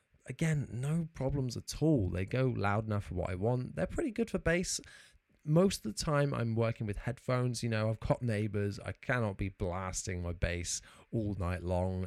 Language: English